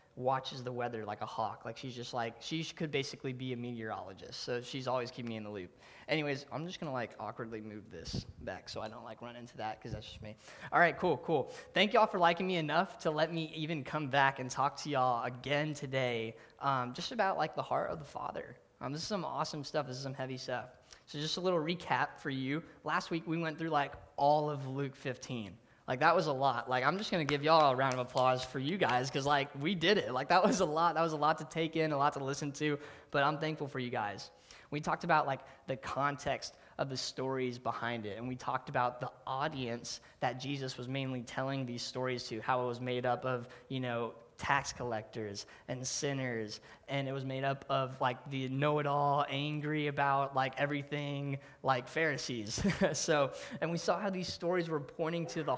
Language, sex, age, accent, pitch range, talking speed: English, male, 20-39, American, 125-150 Hz, 230 wpm